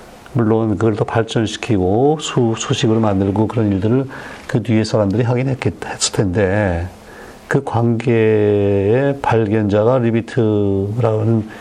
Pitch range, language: 105-130 Hz, Korean